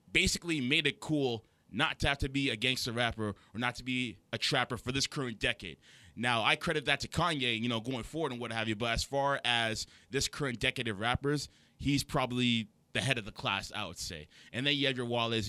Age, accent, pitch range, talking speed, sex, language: 20-39, American, 110-130 Hz, 235 wpm, male, English